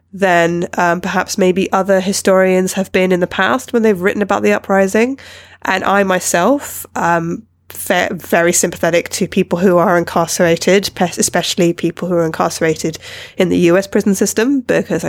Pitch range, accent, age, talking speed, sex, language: 170-205 Hz, British, 20-39, 155 wpm, female, English